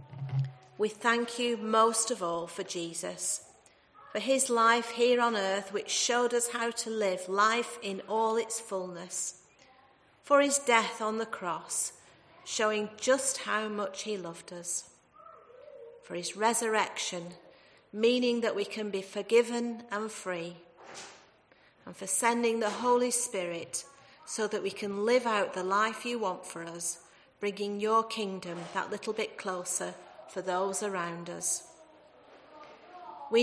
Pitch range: 190-235 Hz